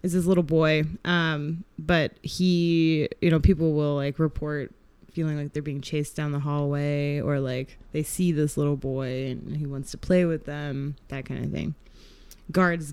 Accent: American